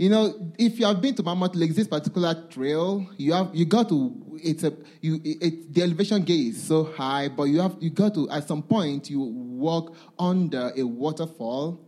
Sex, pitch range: male, 140-195 Hz